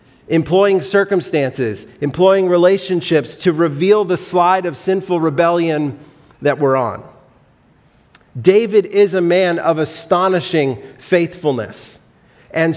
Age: 40-59